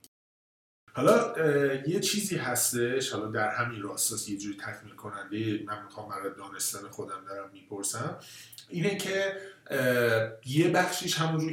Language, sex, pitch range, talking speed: Persian, male, 115-150 Hz, 120 wpm